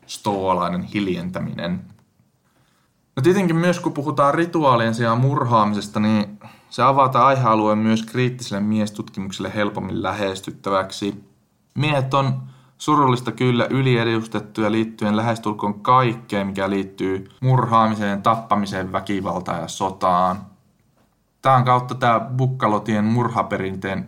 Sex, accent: male, native